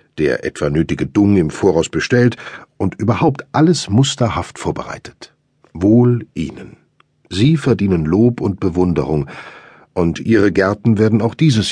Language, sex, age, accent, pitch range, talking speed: German, male, 50-69, German, 90-120 Hz, 130 wpm